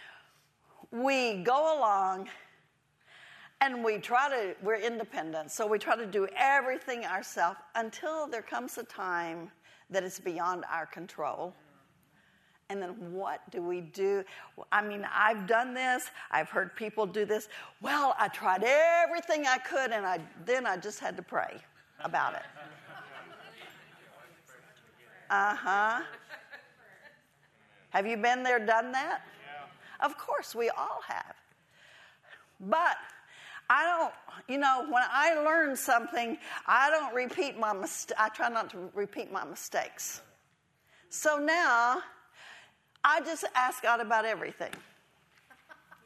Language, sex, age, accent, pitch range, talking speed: English, female, 50-69, American, 205-255 Hz, 130 wpm